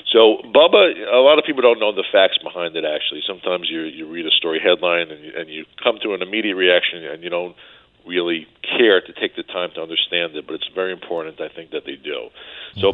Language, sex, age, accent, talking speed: English, male, 50-69, American, 235 wpm